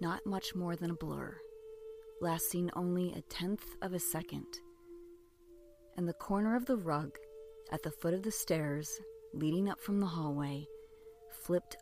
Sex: female